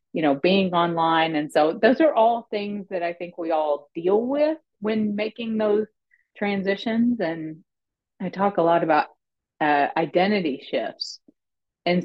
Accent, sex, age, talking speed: American, female, 30-49, 155 wpm